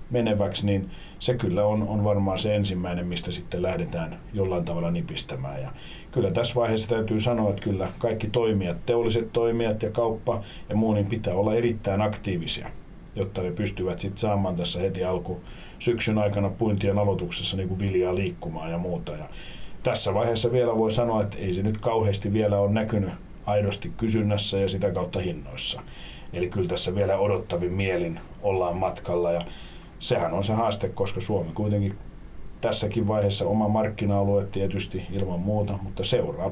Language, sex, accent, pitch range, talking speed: Finnish, male, native, 95-110 Hz, 165 wpm